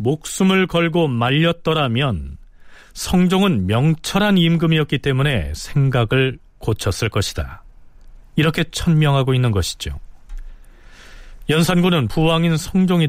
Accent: native